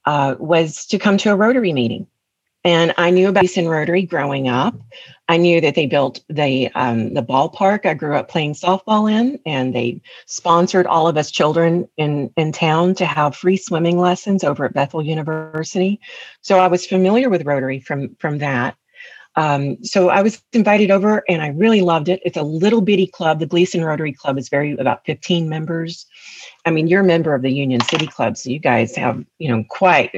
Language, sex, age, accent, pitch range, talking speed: English, female, 40-59, American, 150-195 Hz, 200 wpm